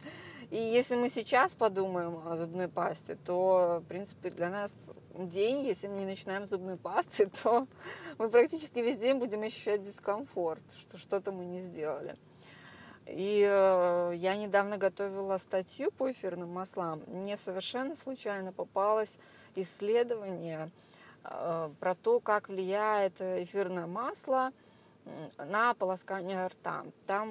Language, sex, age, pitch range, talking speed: Russian, female, 20-39, 180-230 Hz, 125 wpm